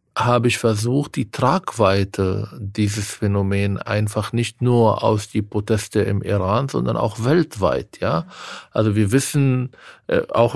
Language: German